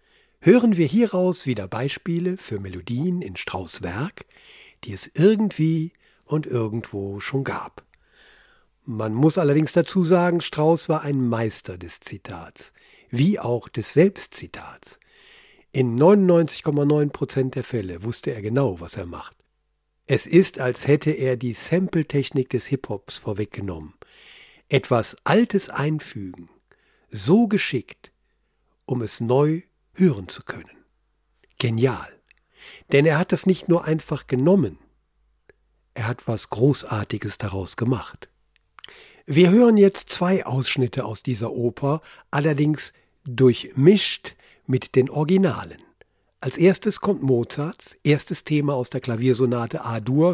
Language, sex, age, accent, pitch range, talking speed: German, male, 50-69, German, 115-165 Hz, 120 wpm